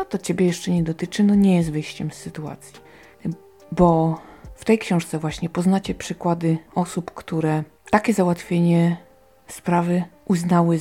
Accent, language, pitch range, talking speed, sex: native, Polish, 160-190 Hz, 135 wpm, female